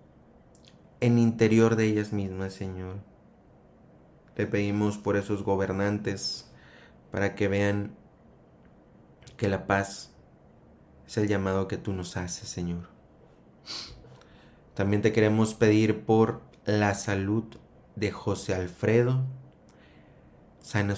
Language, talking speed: Spanish, 105 wpm